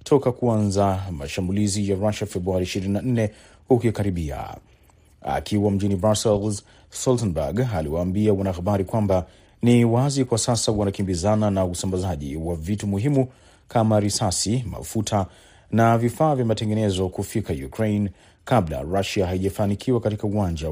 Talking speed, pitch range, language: 115 wpm, 95-115 Hz, Swahili